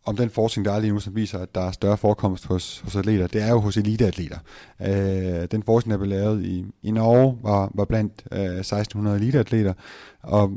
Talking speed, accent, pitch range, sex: 215 wpm, native, 90-105 Hz, male